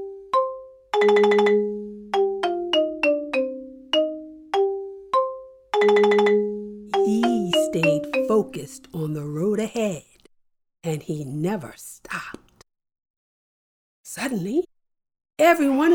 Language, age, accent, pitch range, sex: English, 50-69, American, 190-310 Hz, female